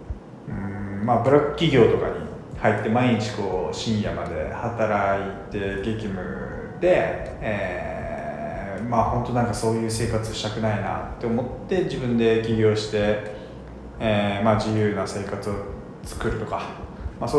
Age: 20-39